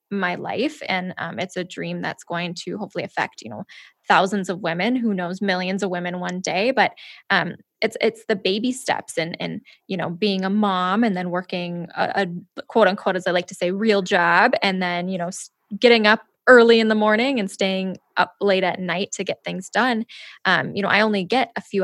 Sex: female